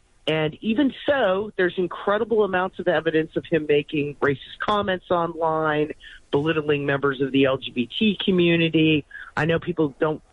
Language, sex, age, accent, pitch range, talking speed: English, male, 40-59, American, 135-165 Hz, 140 wpm